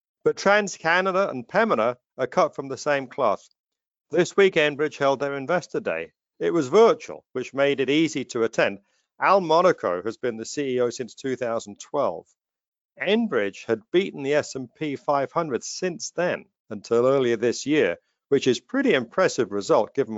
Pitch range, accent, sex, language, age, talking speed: 115-165 Hz, British, male, English, 50-69, 160 wpm